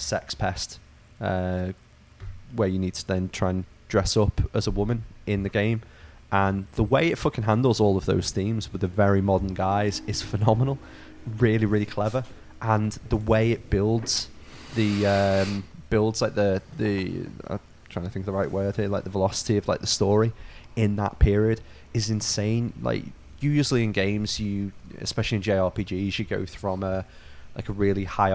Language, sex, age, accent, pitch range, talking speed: English, male, 20-39, British, 95-105 Hz, 180 wpm